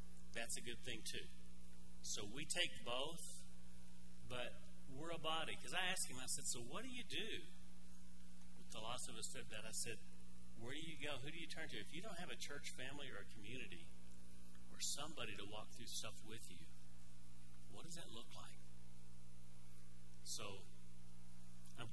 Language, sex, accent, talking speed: English, male, American, 185 wpm